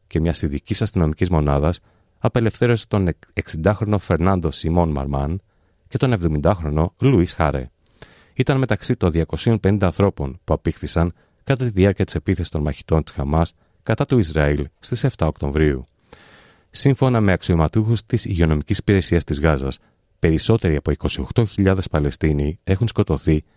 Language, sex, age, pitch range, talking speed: Greek, male, 40-59, 80-110 Hz, 130 wpm